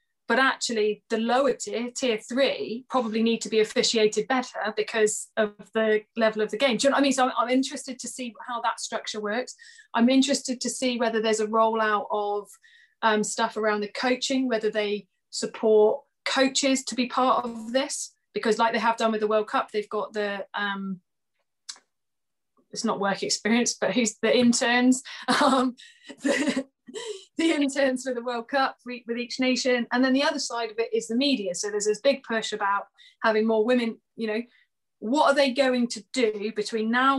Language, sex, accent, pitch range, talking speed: English, female, British, 215-255 Hz, 195 wpm